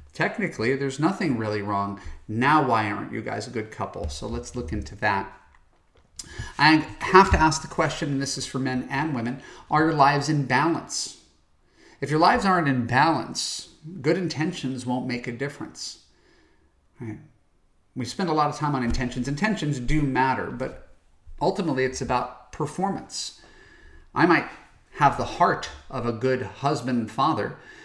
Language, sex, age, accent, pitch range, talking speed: English, male, 40-59, American, 110-140 Hz, 160 wpm